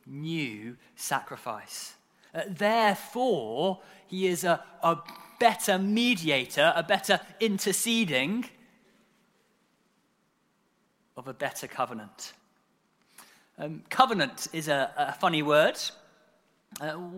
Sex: male